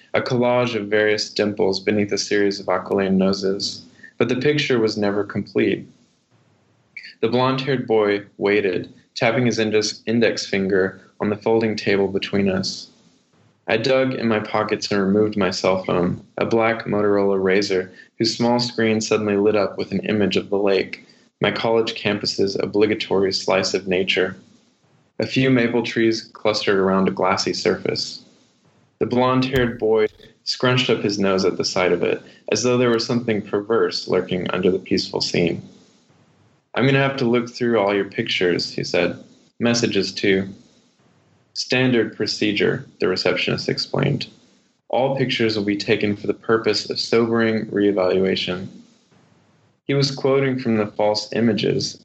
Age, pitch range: 20-39, 100-120 Hz